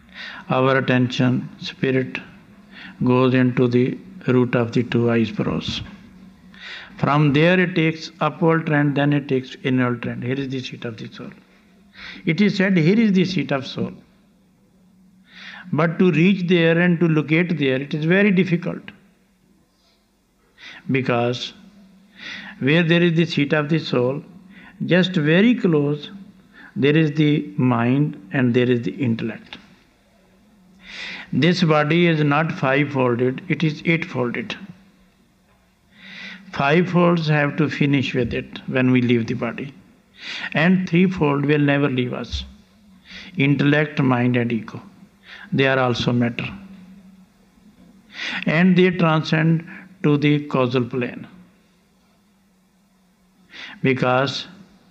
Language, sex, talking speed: English, male, 125 wpm